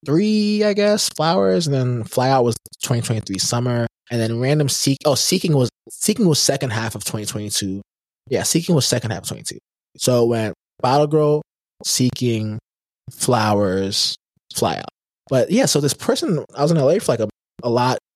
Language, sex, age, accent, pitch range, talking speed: English, male, 20-39, American, 115-150 Hz, 170 wpm